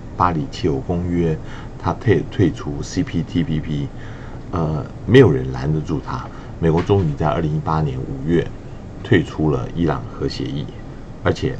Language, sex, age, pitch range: Chinese, male, 50-69, 85-130 Hz